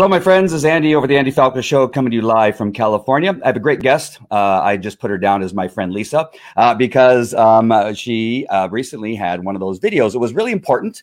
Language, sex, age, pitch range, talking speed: English, male, 40-59, 105-130 Hz, 260 wpm